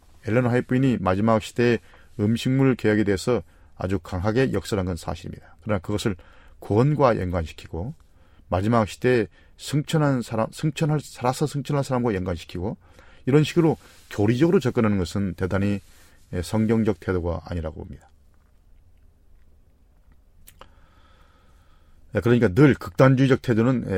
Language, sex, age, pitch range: Korean, male, 40-59, 80-120 Hz